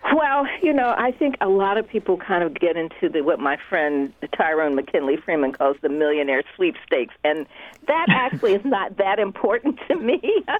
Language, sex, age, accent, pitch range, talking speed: English, female, 50-69, American, 135-185 Hz, 190 wpm